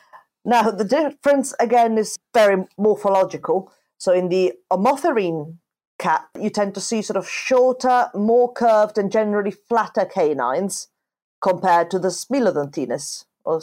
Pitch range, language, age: 180-235 Hz, English, 40-59